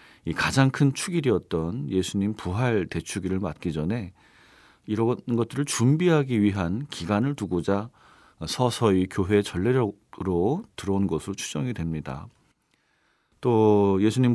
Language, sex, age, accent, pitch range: Korean, male, 40-59, native, 90-130 Hz